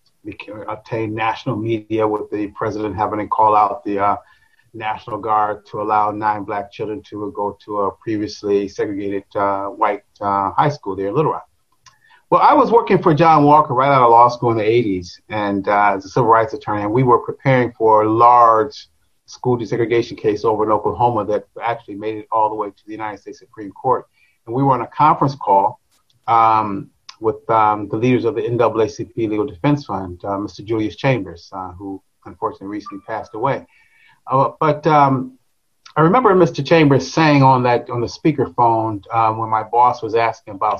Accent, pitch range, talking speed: American, 105-130 Hz, 195 wpm